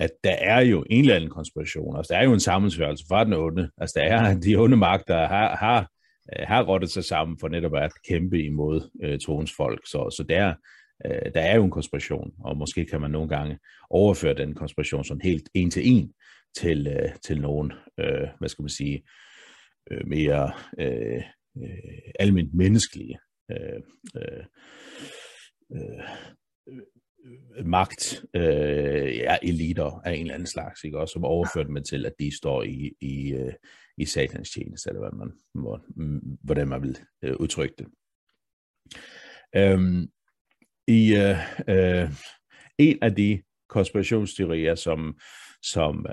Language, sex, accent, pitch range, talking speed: Danish, male, native, 75-100 Hz, 155 wpm